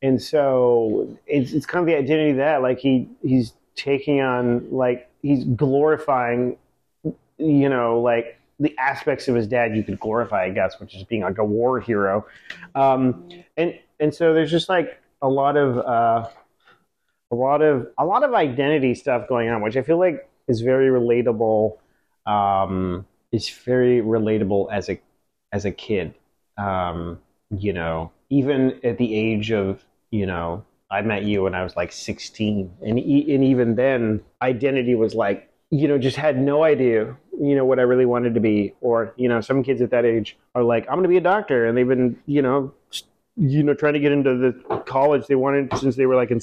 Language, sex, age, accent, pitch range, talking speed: English, male, 30-49, American, 110-140 Hz, 195 wpm